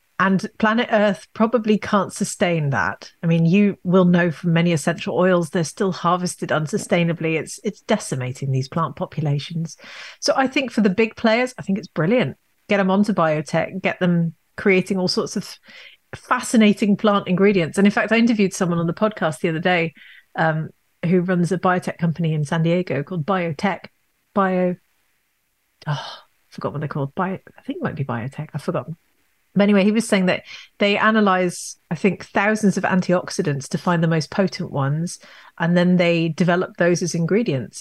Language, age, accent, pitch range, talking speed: English, 40-59, British, 170-210 Hz, 185 wpm